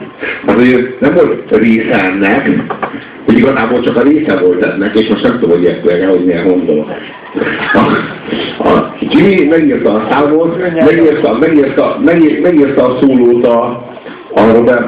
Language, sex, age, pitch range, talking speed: Hungarian, male, 60-79, 120-155 Hz, 125 wpm